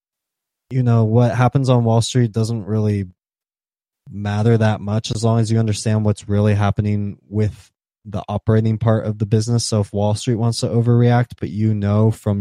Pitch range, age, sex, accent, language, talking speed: 100-115 Hz, 20-39, male, American, English, 185 wpm